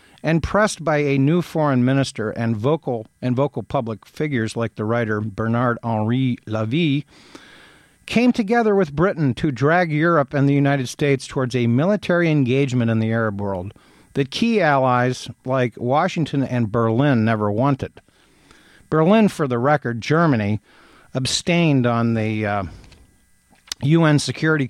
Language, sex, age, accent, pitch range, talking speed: English, male, 50-69, American, 115-150 Hz, 140 wpm